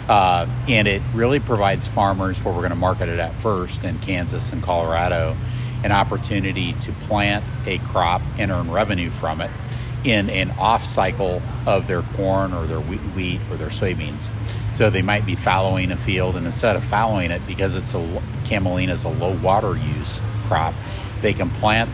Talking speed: 170 wpm